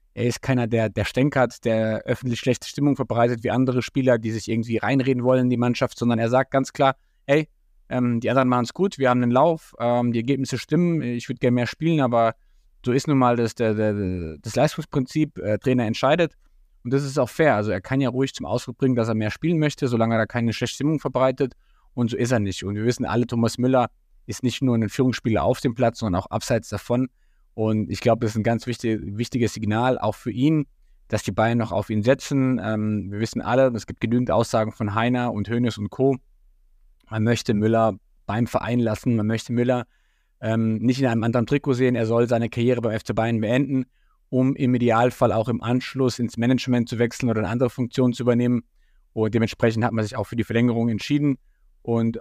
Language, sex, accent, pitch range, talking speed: German, male, German, 115-130 Hz, 220 wpm